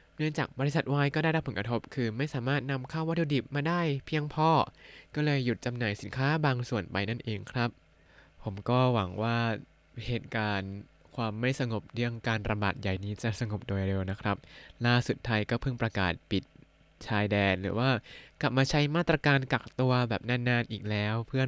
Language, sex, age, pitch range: Thai, male, 20-39, 110-140 Hz